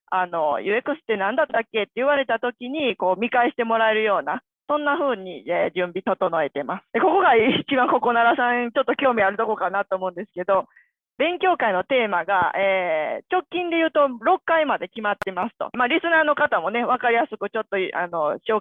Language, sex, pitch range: Japanese, female, 200-295 Hz